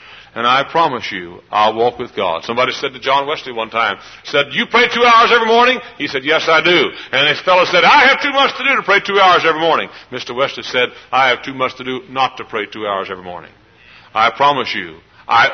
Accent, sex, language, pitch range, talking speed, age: American, male, English, 110-140 Hz, 245 wpm, 60-79